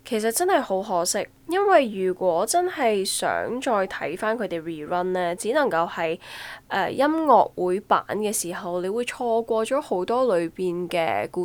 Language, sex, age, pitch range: Chinese, female, 10-29, 180-235 Hz